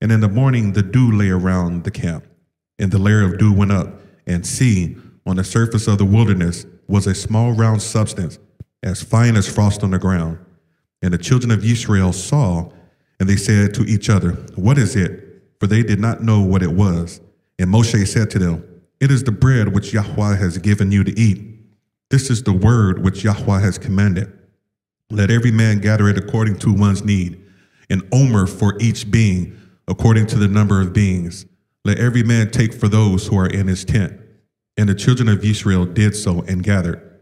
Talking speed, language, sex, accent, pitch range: 200 wpm, English, male, American, 95-110 Hz